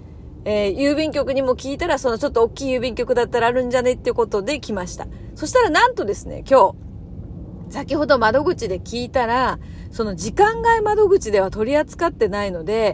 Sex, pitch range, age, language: female, 210-330 Hz, 40-59, Japanese